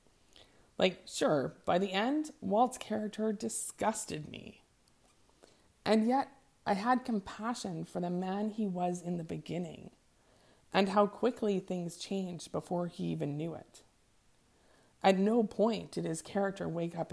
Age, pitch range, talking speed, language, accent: 30-49, 160-210 Hz, 140 wpm, English, American